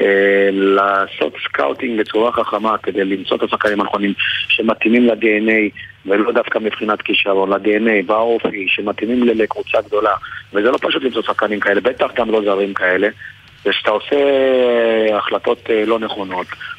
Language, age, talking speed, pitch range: Hebrew, 40-59, 130 wpm, 105-125 Hz